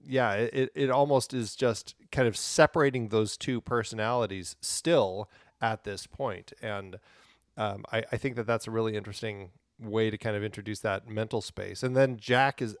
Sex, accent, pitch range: male, American, 100-130 Hz